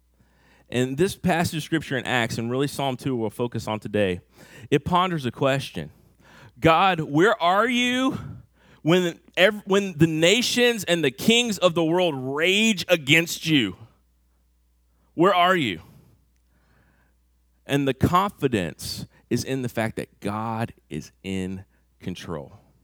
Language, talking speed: English, 135 wpm